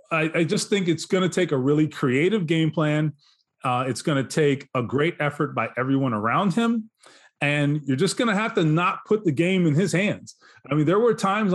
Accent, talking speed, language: American, 225 wpm, English